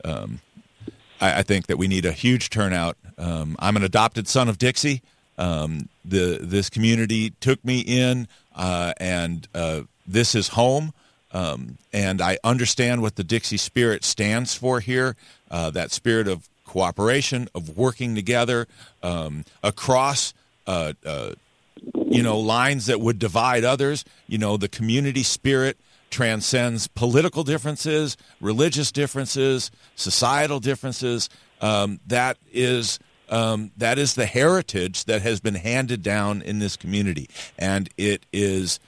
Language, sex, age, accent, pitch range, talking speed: English, male, 50-69, American, 90-125 Hz, 140 wpm